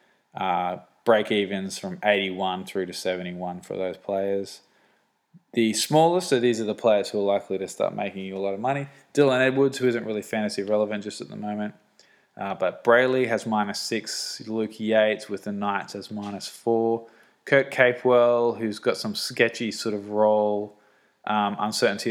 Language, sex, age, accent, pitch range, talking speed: English, male, 20-39, Australian, 100-115 Hz, 175 wpm